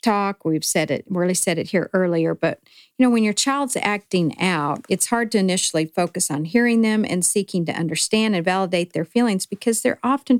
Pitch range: 170-215 Hz